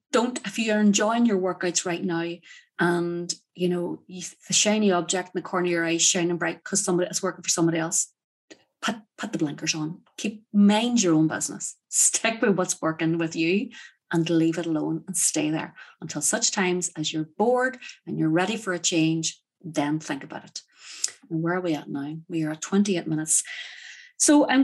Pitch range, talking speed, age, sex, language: 170-220 Hz, 200 wpm, 30-49, female, English